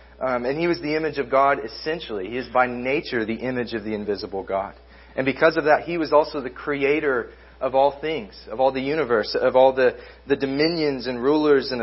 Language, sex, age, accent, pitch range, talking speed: English, male, 30-49, American, 115-145 Hz, 220 wpm